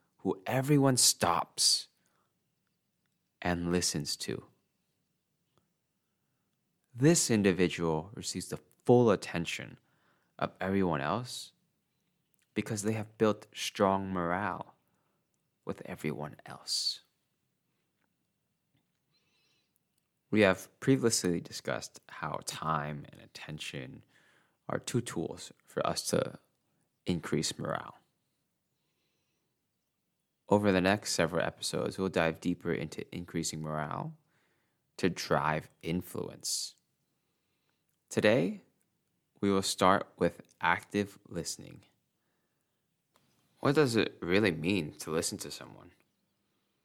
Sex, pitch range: male, 85-110 Hz